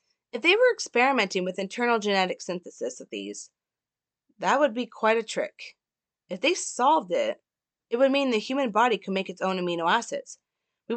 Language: English